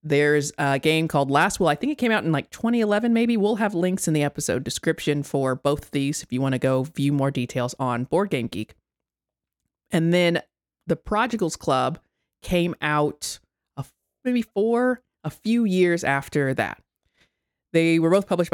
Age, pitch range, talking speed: 30-49, 135-170 Hz, 180 wpm